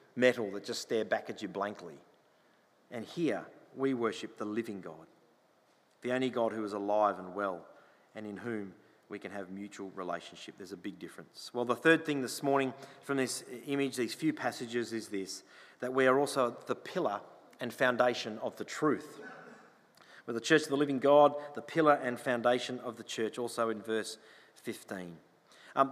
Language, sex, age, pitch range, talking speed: English, male, 40-59, 110-140 Hz, 185 wpm